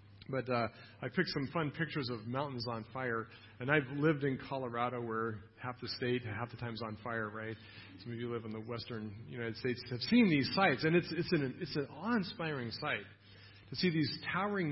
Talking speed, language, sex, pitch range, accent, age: 210 wpm, English, male, 115-155 Hz, American, 40-59